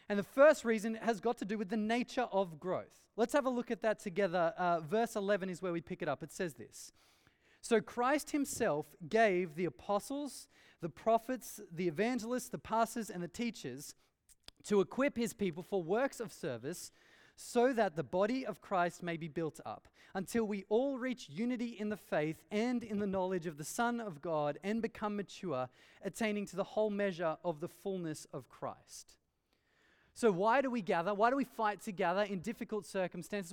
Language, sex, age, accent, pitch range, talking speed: English, male, 30-49, Australian, 185-230 Hz, 195 wpm